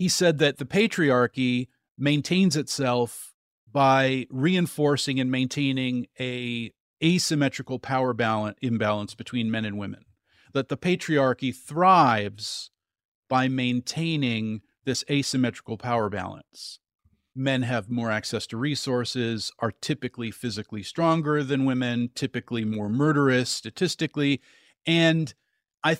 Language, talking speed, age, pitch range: English, 110 wpm, 40-59, 120-155 Hz